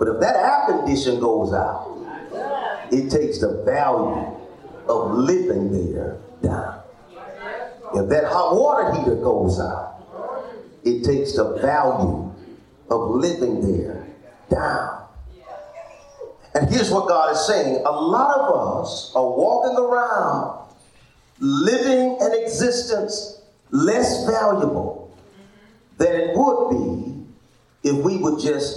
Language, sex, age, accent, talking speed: English, male, 40-59, American, 115 wpm